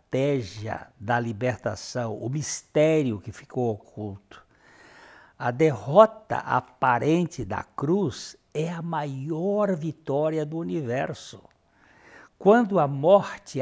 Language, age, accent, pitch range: Portuguese, 60-79, Brazilian, 120-165 Hz